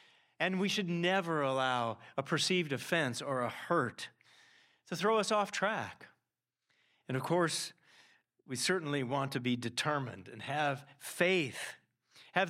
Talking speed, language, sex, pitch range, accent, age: 140 wpm, English, male, 135-195 Hz, American, 40-59